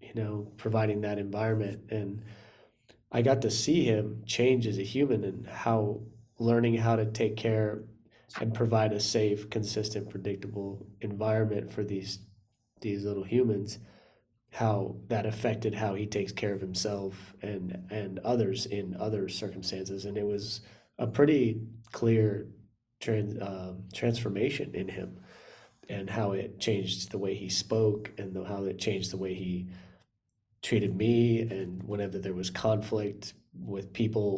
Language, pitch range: English, 100-110 Hz